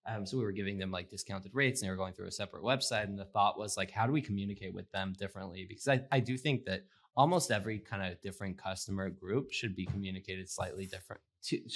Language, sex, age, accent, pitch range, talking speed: English, male, 20-39, American, 95-115 Hz, 245 wpm